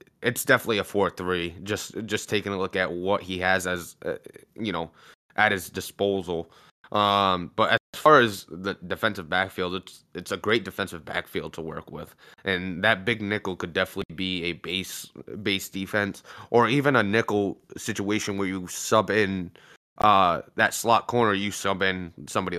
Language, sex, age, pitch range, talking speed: English, male, 20-39, 95-105 Hz, 175 wpm